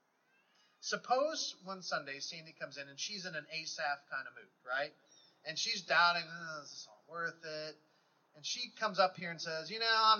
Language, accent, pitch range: English, American, 155-205 Hz